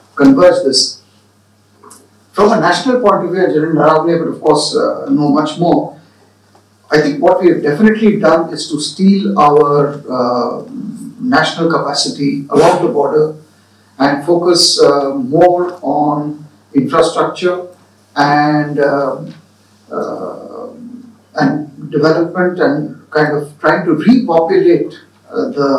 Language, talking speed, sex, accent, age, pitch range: English, 125 wpm, male, Indian, 50-69, 140-190 Hz